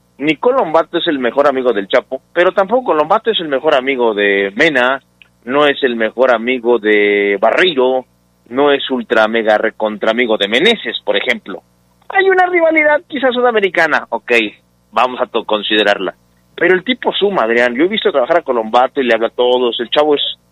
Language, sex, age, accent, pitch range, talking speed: Spanish, male, 30-49, Mexican, 110-170 Hz, 185 wpm